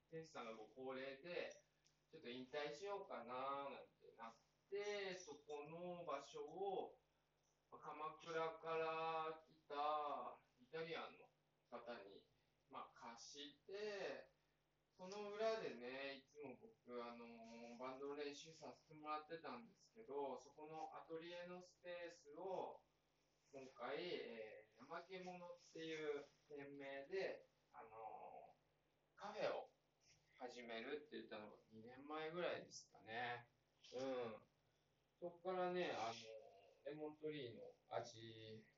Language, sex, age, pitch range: Japanese, male, 20-39, 120-165 Hz